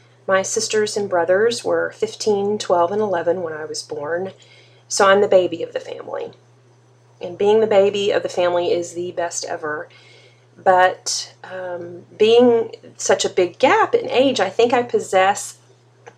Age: 30-49